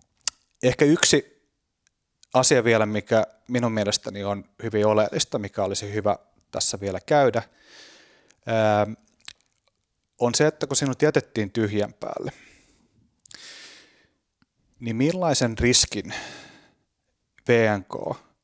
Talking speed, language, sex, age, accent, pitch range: 90 wpm, Finnish, male, 30-49, native, 105-125 Hz